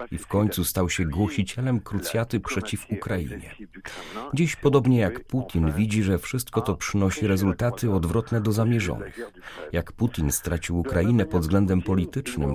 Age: 40-59